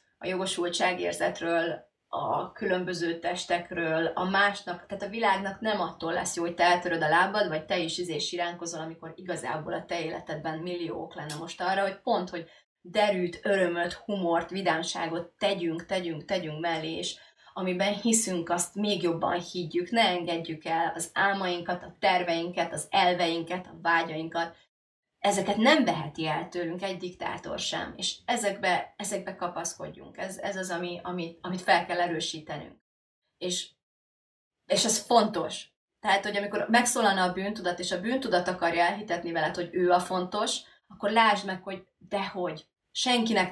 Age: 30-49